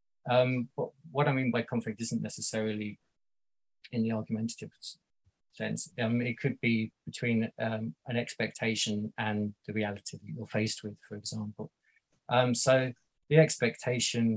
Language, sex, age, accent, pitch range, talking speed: English, male, 20-39, British, 110-125 Hz, 140 wpm